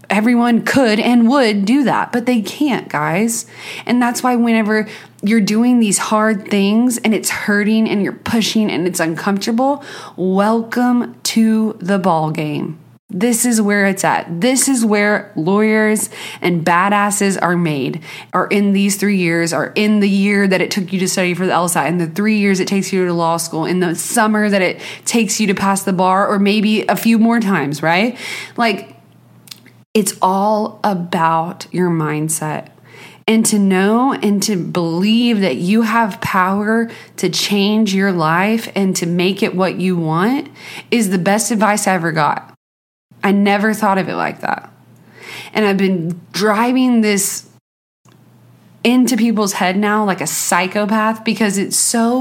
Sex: female